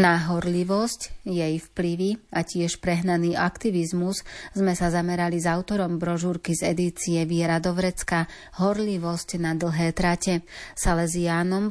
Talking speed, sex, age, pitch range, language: 120 wpm, female, 30-49, 170-185 Hz, Slovak